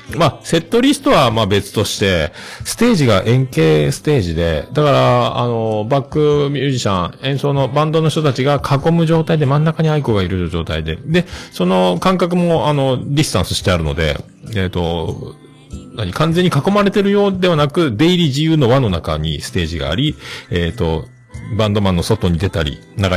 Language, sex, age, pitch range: Japanese, male, 40-59, 90-145 Hz